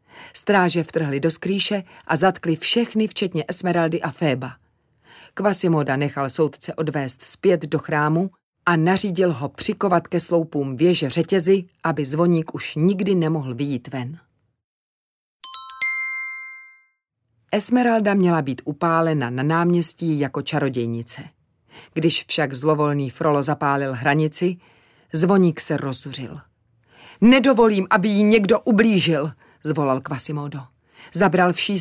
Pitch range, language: 145-185 Hz, Czech